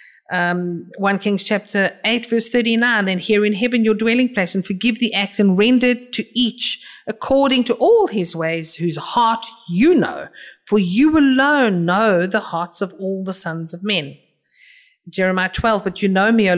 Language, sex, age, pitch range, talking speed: English, female, 50-69, 180-230 Hz, 180 wpm